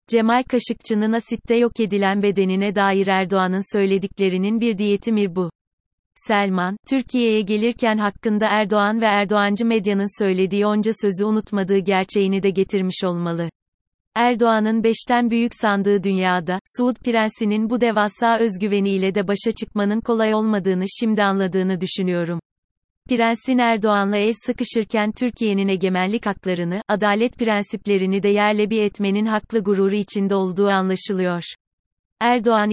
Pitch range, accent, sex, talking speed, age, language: 195-225 Hz, native, female, 120 wpm, 30-49, Turkish